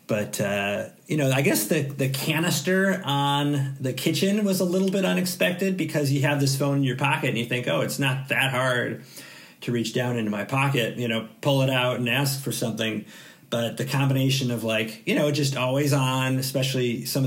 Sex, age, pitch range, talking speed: male, 40-59, 115-140 Hz, 210 wpm